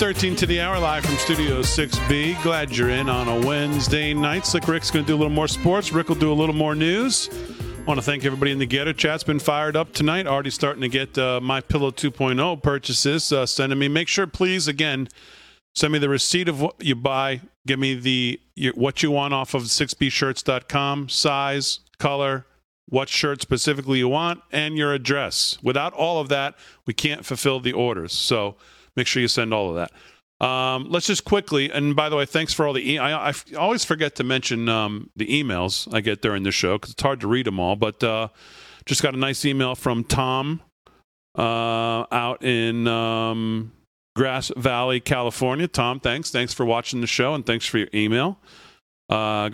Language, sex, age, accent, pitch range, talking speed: English, male, 40-59, American, 120-150 Hz, 205 wpm